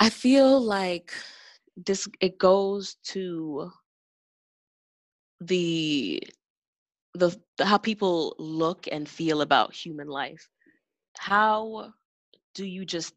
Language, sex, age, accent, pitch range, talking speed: English, female, 20-39, American, 160-195 Hz, 100 wpm